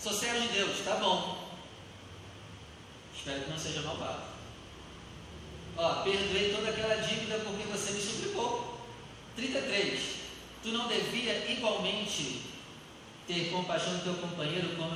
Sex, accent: male, Brazilian